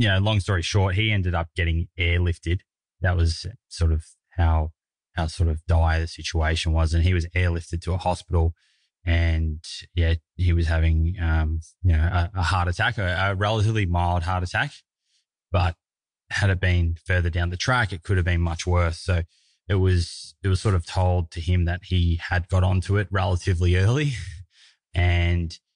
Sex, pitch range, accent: male, 85-95 Hz, Australian